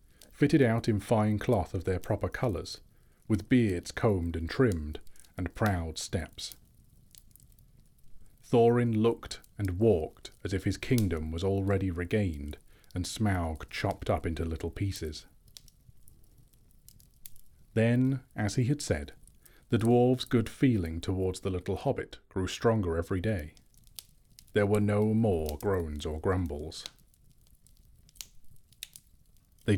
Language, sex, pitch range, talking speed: English, male, 90-120 Hz, 120 wpm